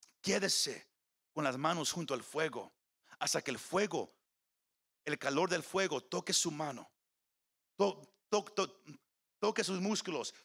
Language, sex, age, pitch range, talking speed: Spanish, male, 50-69, 135-190 Hz, 120 wpm